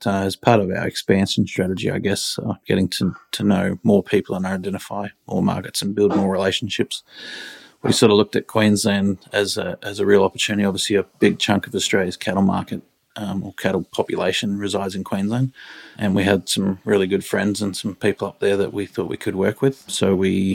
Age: 30-49